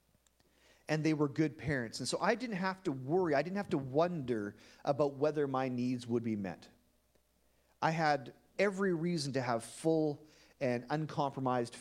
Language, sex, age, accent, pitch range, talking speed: English, male, 40-59, American, 135-185 Hz, 170 wpm